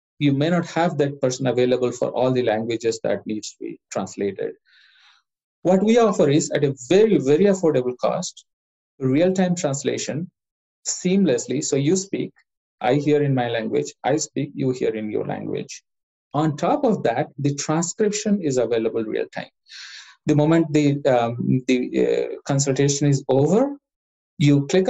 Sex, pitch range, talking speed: male, 135-190 Hz, 150 wpm